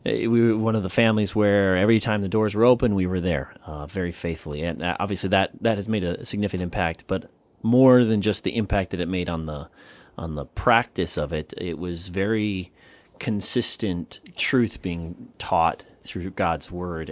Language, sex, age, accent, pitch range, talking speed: English, male, 30-49, American, 90-110 Hz, 185 wpm